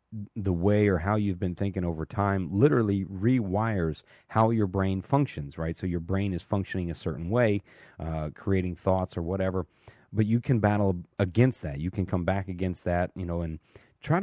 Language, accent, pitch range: English, American, 85-110 Hz